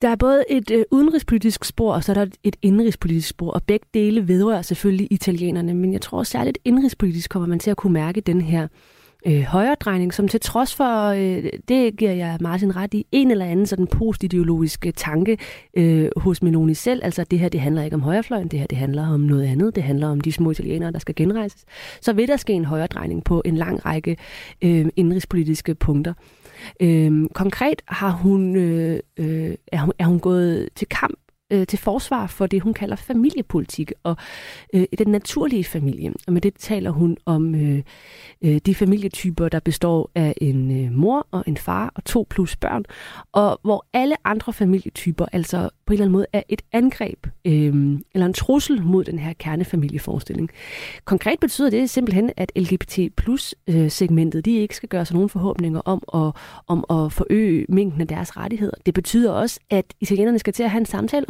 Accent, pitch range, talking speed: native, 165-210 Hz, 185 wpm